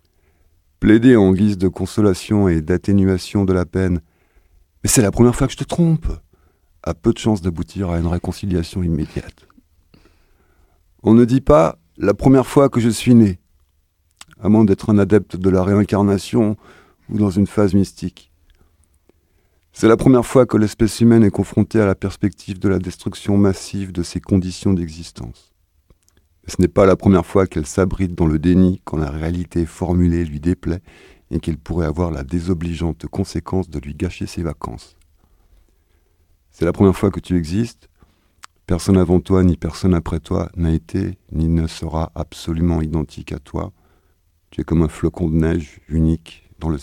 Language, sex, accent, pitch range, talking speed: French, male, French, 80-100 Hz, 170 wpm